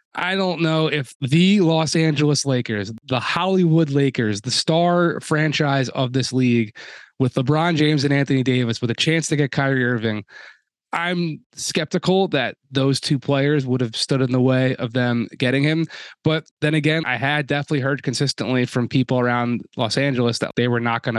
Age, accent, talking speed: 20-39, American, 180 wpm